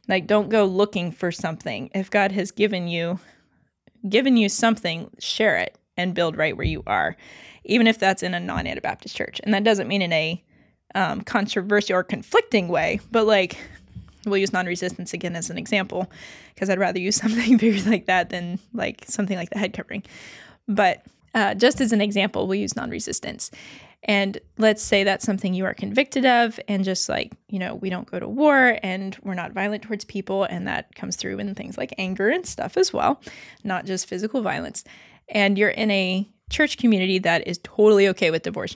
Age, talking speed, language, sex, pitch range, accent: 20-39, 195 wpm, English, female, 185-220 Hz, American